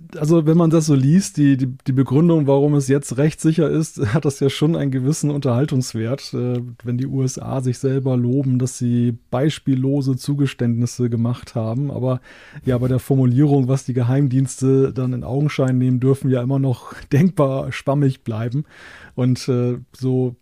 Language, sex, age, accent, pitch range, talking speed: German, male, 30-49, German, 125-140 Hz, 170 wpm